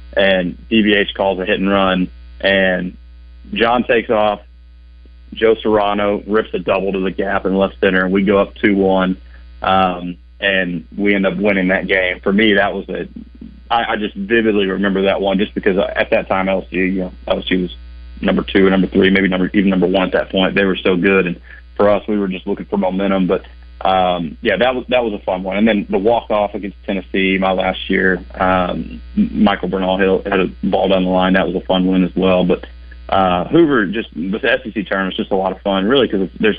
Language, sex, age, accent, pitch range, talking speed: English, male, 30-49, American, 90-100 Hz, 220 wpm